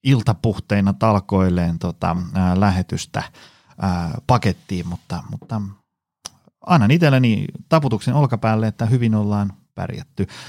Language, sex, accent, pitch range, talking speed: Finnish, male, native, 100-135 Hz, 95 wpm